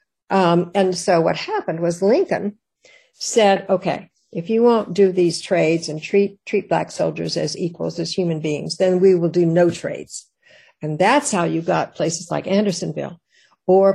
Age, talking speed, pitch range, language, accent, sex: 60-79, 170 wpm, 170-205 Hz, English, American, female